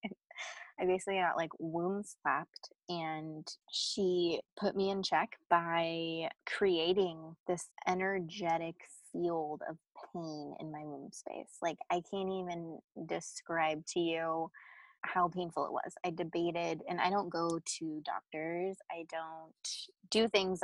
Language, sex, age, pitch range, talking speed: English, female, 20-39, 165-190 Hz, 135 wpm